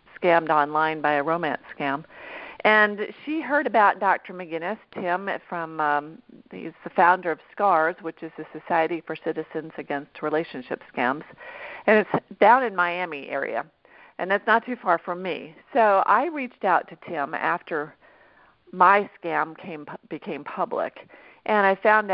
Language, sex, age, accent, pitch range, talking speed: English, female, 50-69, American, 160-215 Hz, 155 wpm